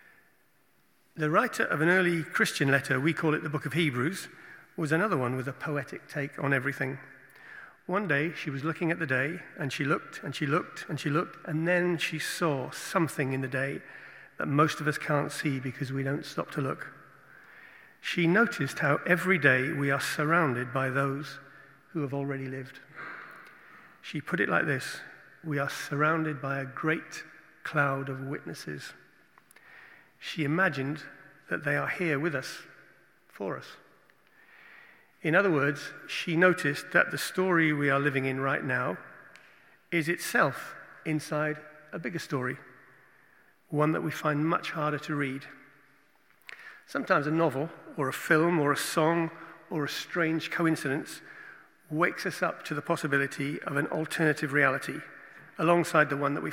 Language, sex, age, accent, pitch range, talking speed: English, male, 40-59, British, 140-165 Hz, 165 wpm